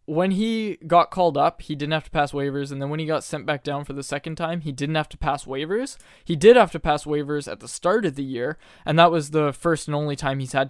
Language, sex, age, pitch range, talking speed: English, male, 20-39, 140-165 Hz, 285 wpm